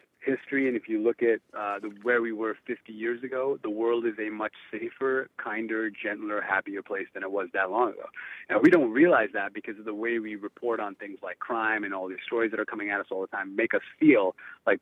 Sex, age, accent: male, 30-49, American